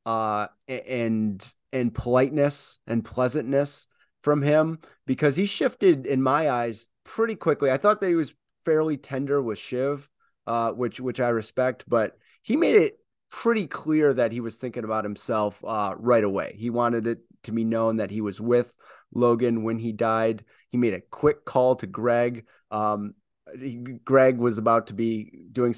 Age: 30-49